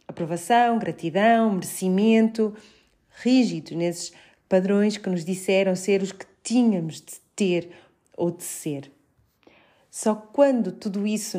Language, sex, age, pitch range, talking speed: Portuguese, female, 40-59, 175-205 Hz, 115 wpm